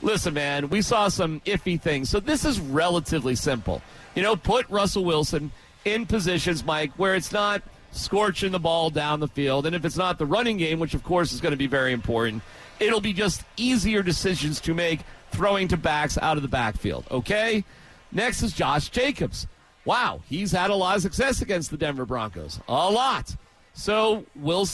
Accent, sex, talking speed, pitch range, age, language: American, male, 190 wpm, 150-200 Hz, 50-69, English